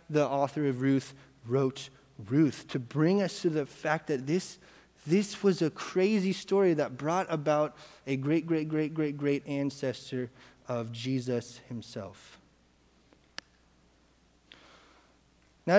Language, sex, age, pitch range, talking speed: English, male, 30-49, 135-190 Hz, 125 wpm